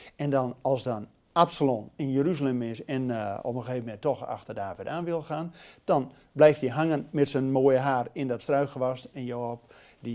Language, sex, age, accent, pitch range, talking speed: Dutch, male, 50-69, Dutch, 135-225 Hz, 200 wpm